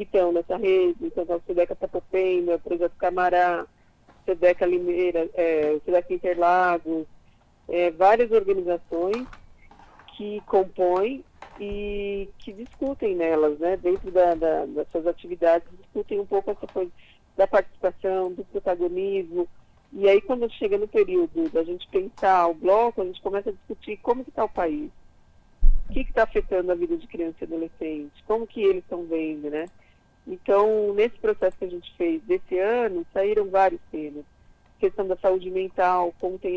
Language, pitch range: Portuguese, 175-215 Hz